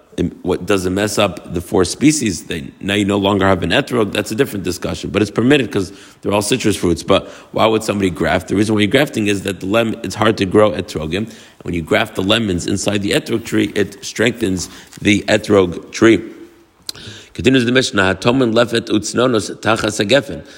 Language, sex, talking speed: English, male, 185 wpm